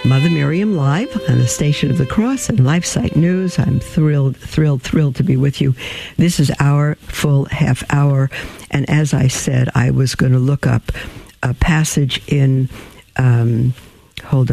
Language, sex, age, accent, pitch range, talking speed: English, female, 60-79, American, 115-145 Hz, 175 wpm